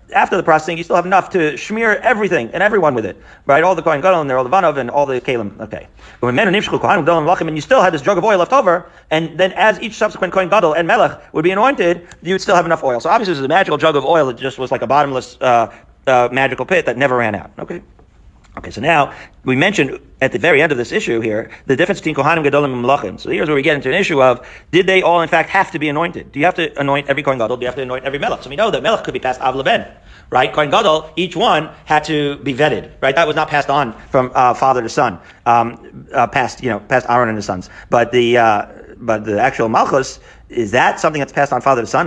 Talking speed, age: 280 wpm, 40-59